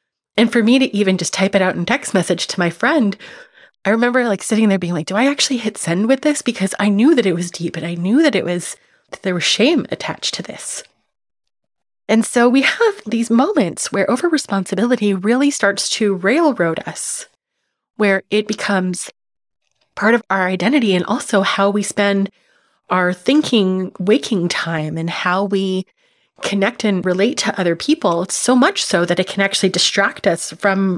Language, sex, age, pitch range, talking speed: English, female, 30-49, 185-240 Hz, 190 wpm